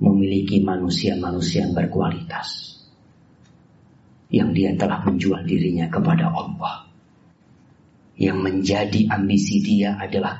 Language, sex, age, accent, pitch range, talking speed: Indonesian, male, 40-59, native, 100-120 Hz, 90 wpm